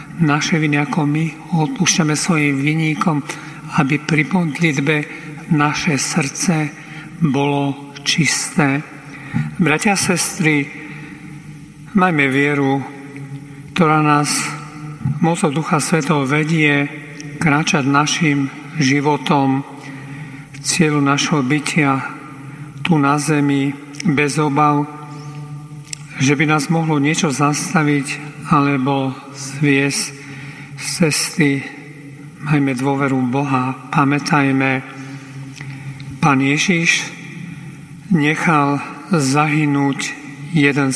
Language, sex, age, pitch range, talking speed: Slovak, male, 50-69, 140-155 Hz, 80 wpm